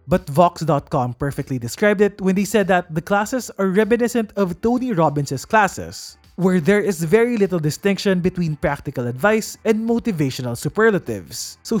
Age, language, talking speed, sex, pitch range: 20-39, English, 155 wpm, male, 150-220 Hz